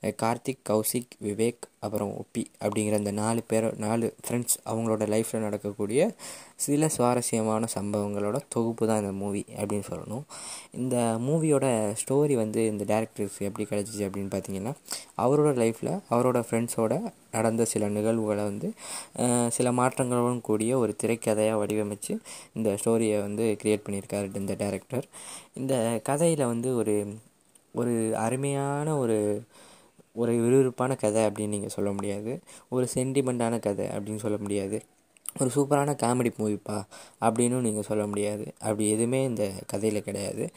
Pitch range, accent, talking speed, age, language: 105-120 Hz, native, 130 wpm, 20-39, Tamil